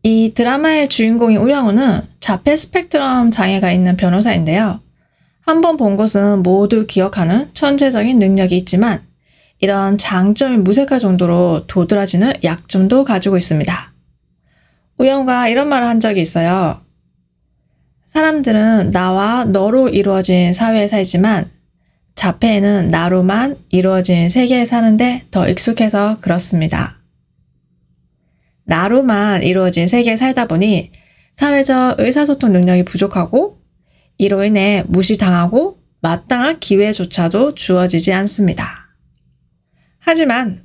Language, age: Korean, 20-39